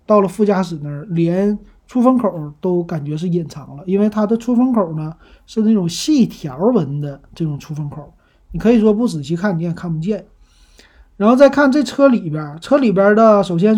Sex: male